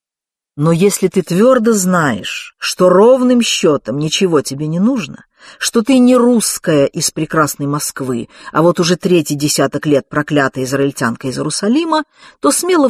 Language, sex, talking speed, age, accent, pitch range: Russian, female, 145 wpm, 50-69, native, 145-220 Hz